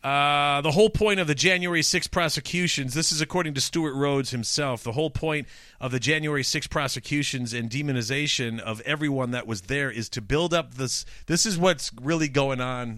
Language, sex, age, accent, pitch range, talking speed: English, male, 40-59, American, 125-160 Hz, 195 wpm